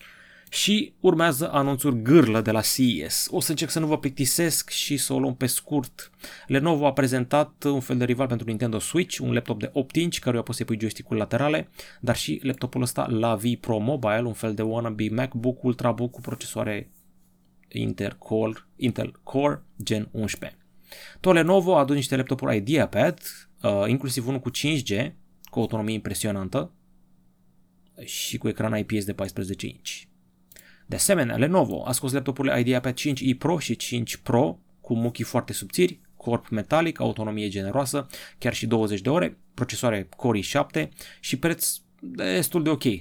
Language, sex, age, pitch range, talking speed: Romanian, male, 20-39, 110-140 Hz, 160 wpm